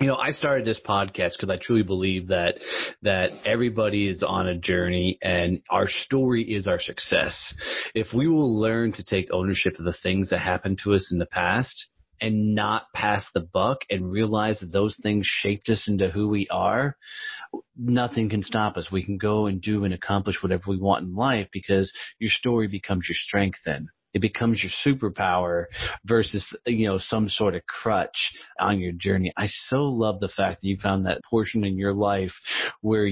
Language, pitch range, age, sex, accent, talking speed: English, 95-110 Hz, 30-49, male, American, 195 wpm